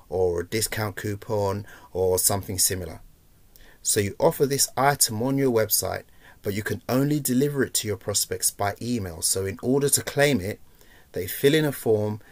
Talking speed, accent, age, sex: 180 wpm, British, 30-49, male